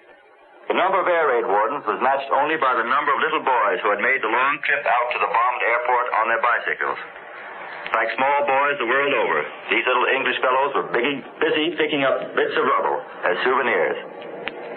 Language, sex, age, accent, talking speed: English, male, 60-79, American, 195 wpm